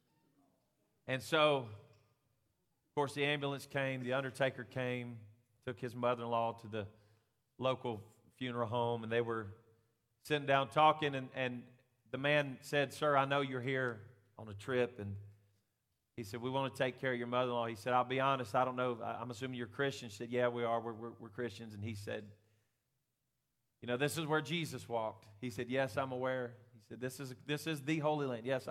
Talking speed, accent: 190 wpm, American